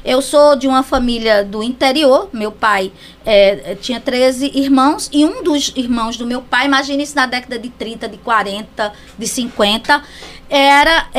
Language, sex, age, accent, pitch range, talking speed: Portuguese, female, 20-39, Brazilian, 245-310 Hz, 165 wpm